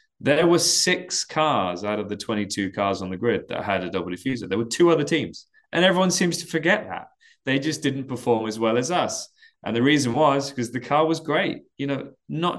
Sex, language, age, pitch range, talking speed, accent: male, English, 20-39, 105-145 Hz, 230 wpm, British